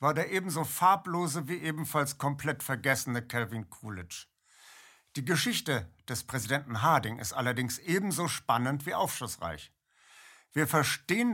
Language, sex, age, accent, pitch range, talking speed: German, male, 60-79, German, 115-155 Hz, 120 wpm